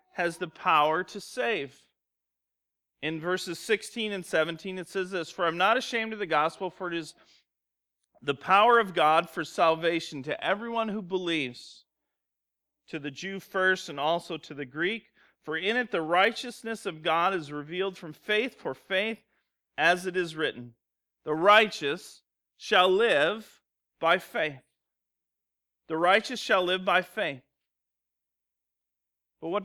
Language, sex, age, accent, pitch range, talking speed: English, male, 40-59, American, 140-190 Hz, 150 wpm